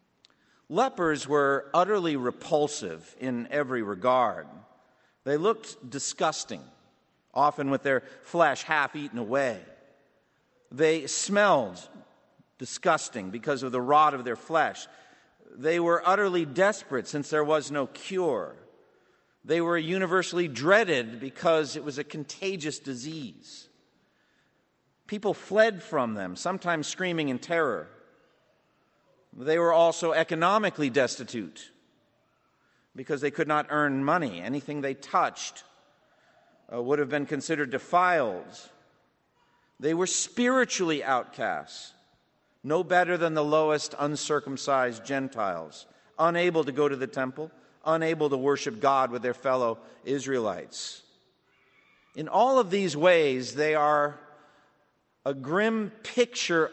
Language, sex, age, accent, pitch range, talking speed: English, male, 50-69, American, 140-175 Hz, 115 wpm